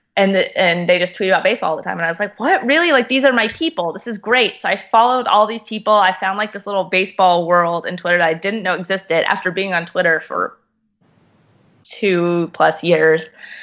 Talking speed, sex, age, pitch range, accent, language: 230 wpm, female, 20-39, 180-225 Hz, American, English